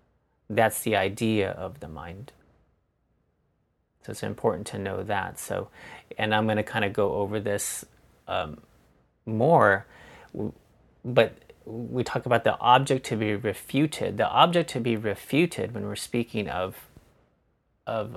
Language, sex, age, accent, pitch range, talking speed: English, male, 30-49, American, 100-120 Hz, 140 wpm